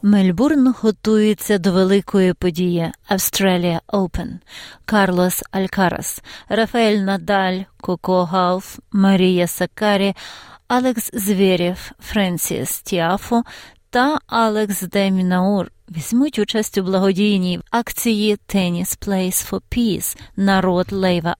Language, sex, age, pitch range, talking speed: Ukrainian, female, 30-49, 180-215 Hz, 95 wpm